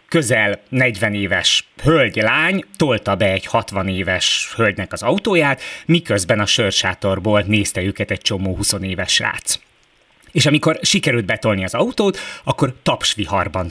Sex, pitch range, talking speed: male, 105-130 Hz, 130 wpm